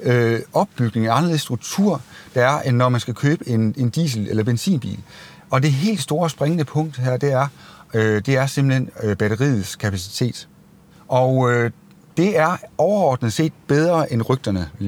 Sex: male